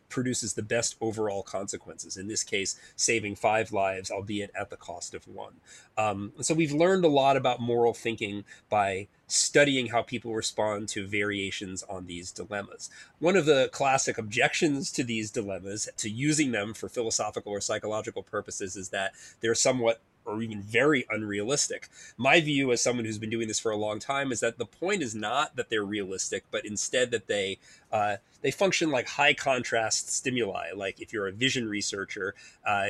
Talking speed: 180 wpm